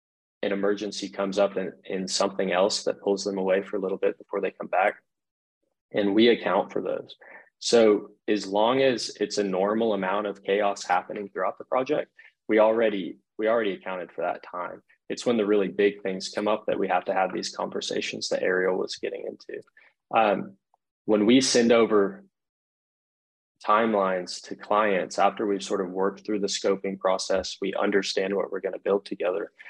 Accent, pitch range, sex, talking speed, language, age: American, 95-105 Hz, male, 180 wpm, English, 20-39